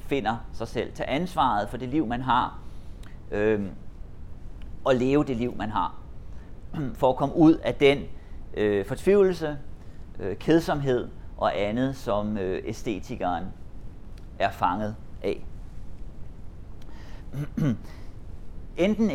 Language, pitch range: Danish, 100-135 Hz